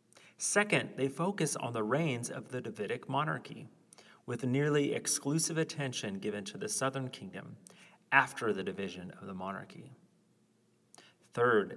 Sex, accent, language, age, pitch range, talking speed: male, American, English, 40-59, 105-145 Hz, 135 wpm